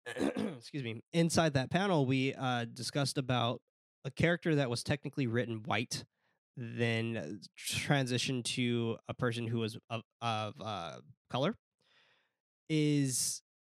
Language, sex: English, male